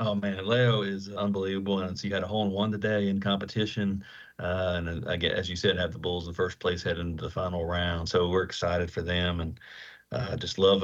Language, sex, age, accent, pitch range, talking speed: English, male, 40-59, American, 95-105 Hz, 235 wpm